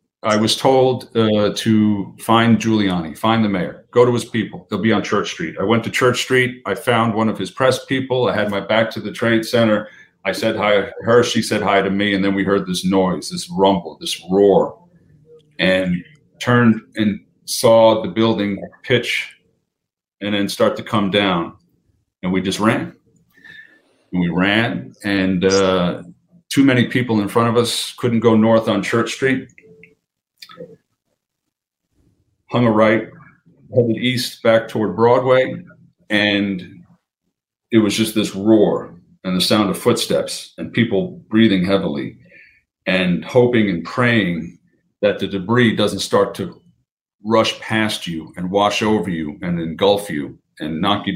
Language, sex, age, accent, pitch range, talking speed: English, male, 40-59, American, 100-120 Hz, 165 wpm